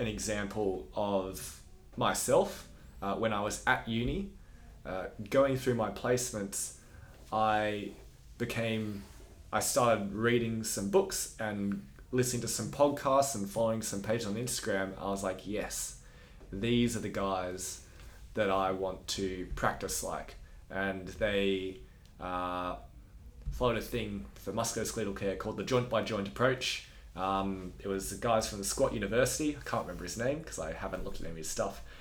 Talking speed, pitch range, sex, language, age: 160 wpm, 95-115 Hz, male, English, 20-39